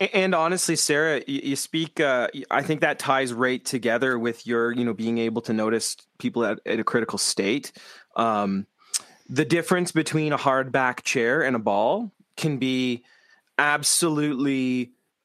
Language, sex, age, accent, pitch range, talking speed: English, male, 30-49, American, 125-150 Hz, 155 wpm